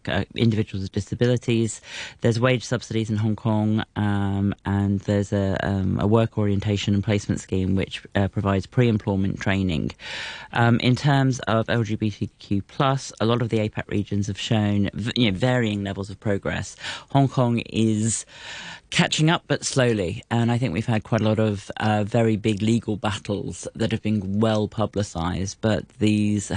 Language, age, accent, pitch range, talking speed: English, 30-49, British, 100-115 Hz, 160 wpm